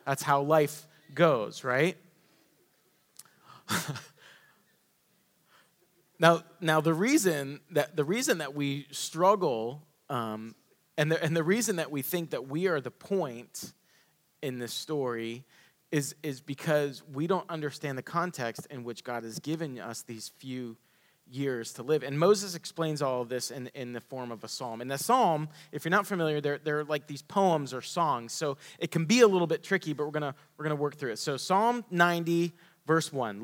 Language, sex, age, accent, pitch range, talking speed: English, male, 30-49, American, 140-175 Hz, 175 wpm